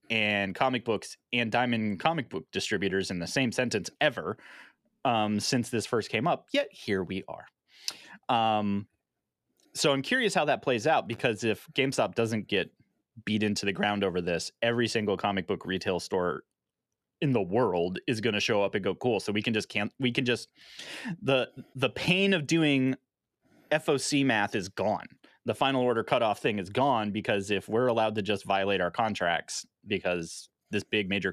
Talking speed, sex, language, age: 185 wpm, male, English, 30-49